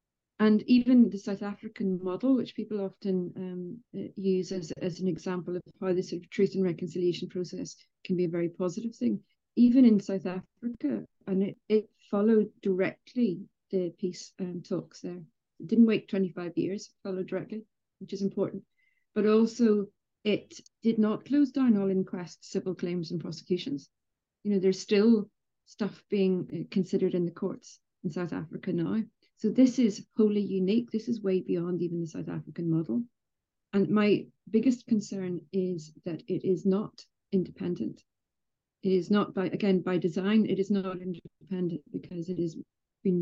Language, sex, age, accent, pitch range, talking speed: English, female, 40-59, British, 175-210 Hz, 165 wpm